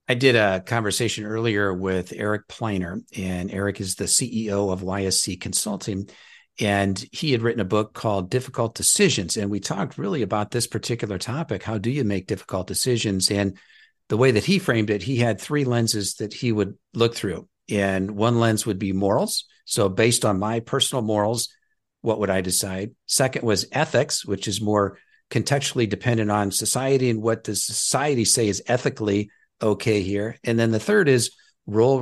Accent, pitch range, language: American, 105-125 Hz, English